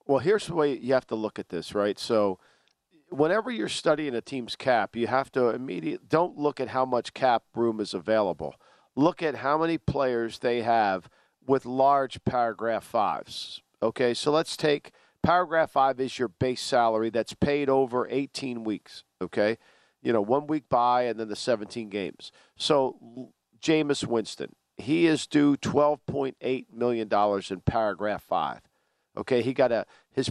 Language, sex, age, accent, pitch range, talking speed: English, male, 50-69, American, 120-150 Hz, 170 wpm